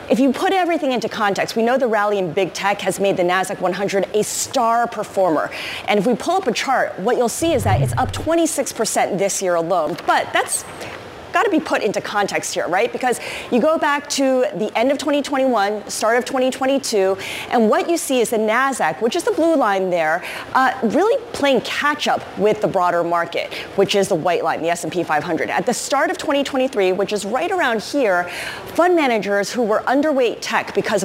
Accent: American